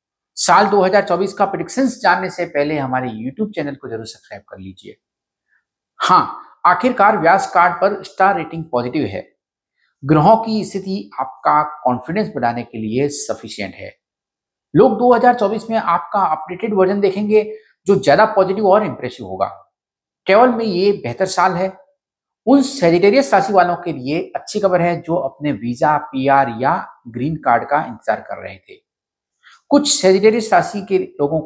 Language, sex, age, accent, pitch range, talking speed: Hindi, male, 50-69, native, 155-210 Hz, 115 wpm